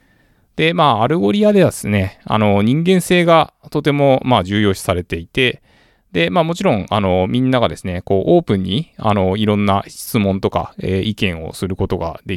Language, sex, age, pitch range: Japanese, male, 20-39, 90-125 Hz